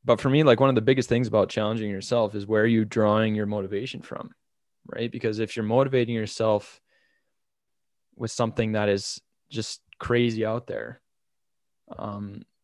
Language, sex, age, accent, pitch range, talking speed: English, male, 20-39, American, 105-120 Hz, 165 wpm